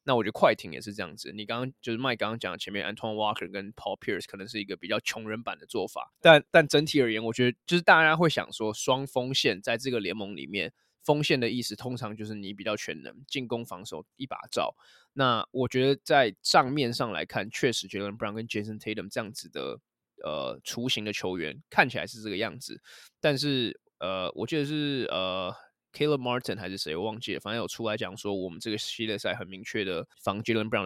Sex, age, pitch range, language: male, 20-39, 105-130 Hz, Chinese